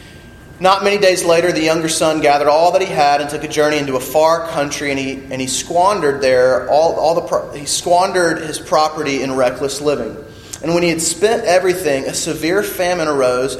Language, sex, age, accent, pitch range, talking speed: English, male, 30-49, American, 135-180 Hz, 205 wpm